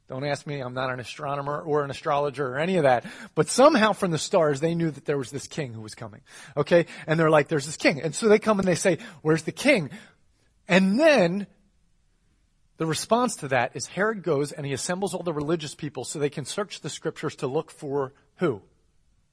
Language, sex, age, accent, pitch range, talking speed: English, male, 30-49, American, 145-195 Hz, 225 wpm